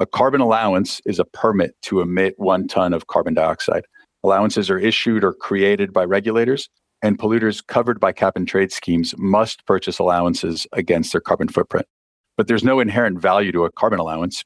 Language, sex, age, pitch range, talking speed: English, male, 40-59, 90-110 Hz, 175 wpm